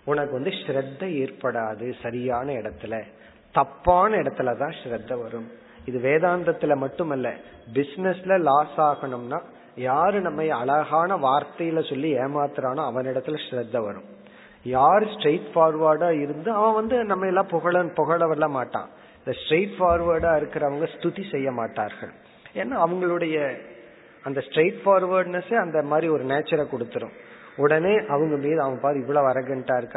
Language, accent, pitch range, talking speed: Tamil, native, 130-175 Hz, 115 wpm